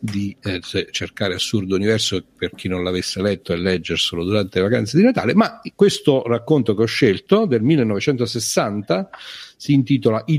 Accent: native